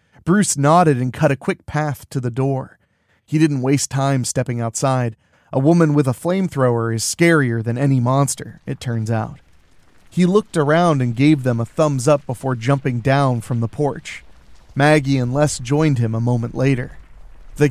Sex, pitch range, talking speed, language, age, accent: male, 120-145 Hz, 180 wpm, English, 40-59, American